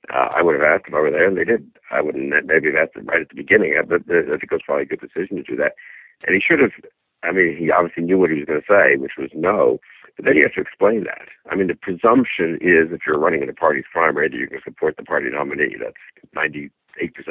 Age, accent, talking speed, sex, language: 60-79, American, 285 wpm, male, English